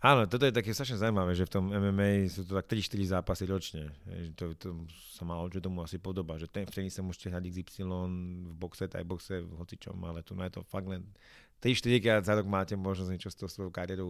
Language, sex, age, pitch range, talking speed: Slovak, male, 30-49, 90-100 Hz, 215 wpm